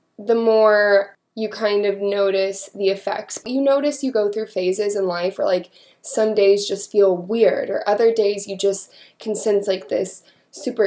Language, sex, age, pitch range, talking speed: English, female, 20-39, 190-220 Hz, 180 wpm